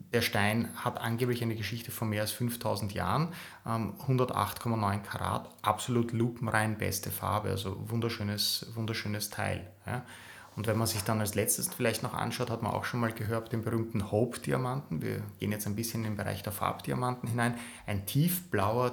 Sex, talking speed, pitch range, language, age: male, 170 wpm, 105-120 Hz, German, 30-49